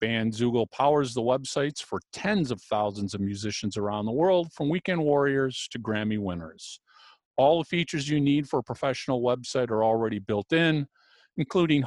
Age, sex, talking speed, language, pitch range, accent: 50-69, male, 165 wpm, English, 110-150 Hz, American